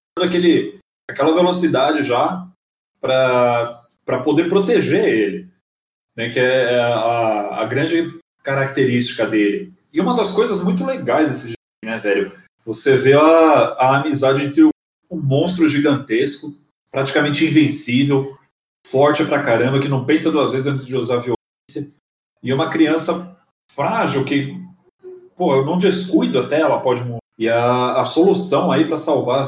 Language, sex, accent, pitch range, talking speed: Portuguese, male, Brazilian, 125-175 Hz, 145 wpm